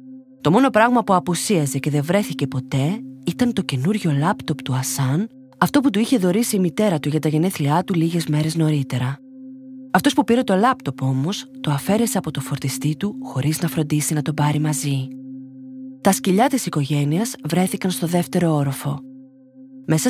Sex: female